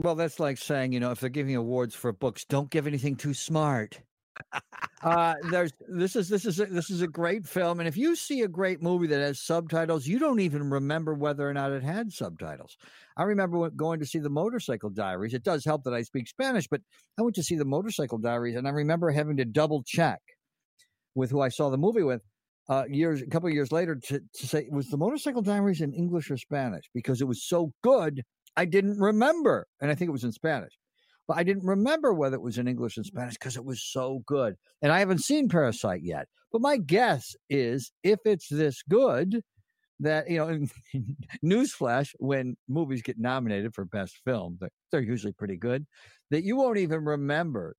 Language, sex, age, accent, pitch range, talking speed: English, male, 50-69, American, 125-175 Hz, 215 wpm